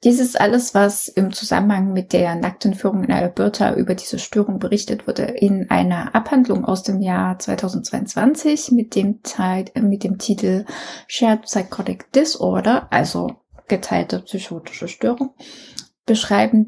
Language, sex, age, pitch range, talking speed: German, female, 20-39, 190-235 Hz, 135 wpm